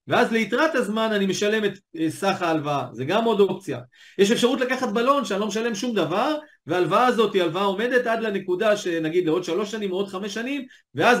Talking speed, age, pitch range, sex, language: 200 wpm, 40-59, 160-225 Hz, male, Hebrew